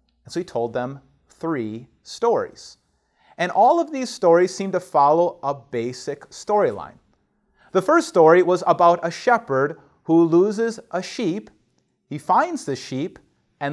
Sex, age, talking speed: male, 30-49, 145 wpm